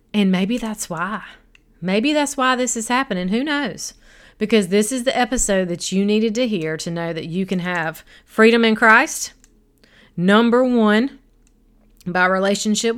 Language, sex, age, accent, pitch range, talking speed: English, female, 30-49, American, 190-230 Hz, 160 wpm